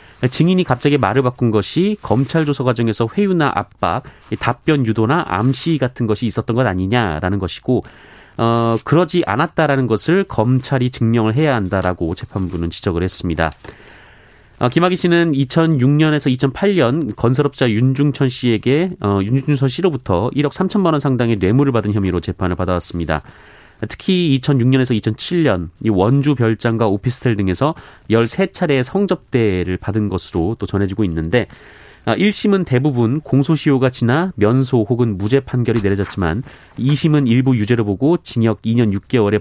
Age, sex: 30-49, male